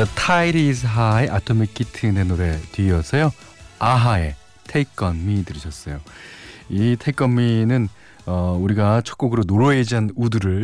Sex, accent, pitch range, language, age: male, native, 90-130 Hz, Korean, 40-59